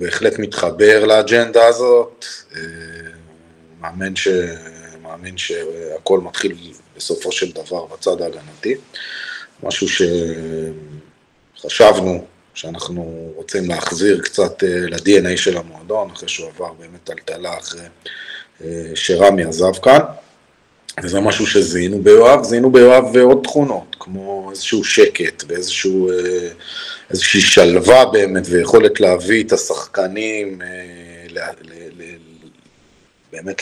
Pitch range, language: 85-135 Hz, Hebrew